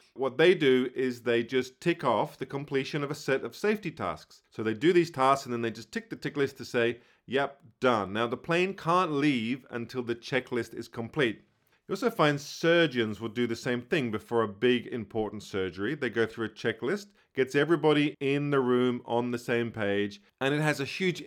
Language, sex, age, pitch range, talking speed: English, male, 40-59, 115-150 Hz, 215 wpm